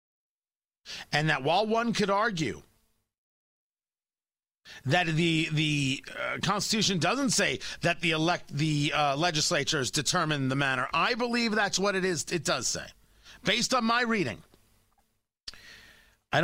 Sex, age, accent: male, 40-59, American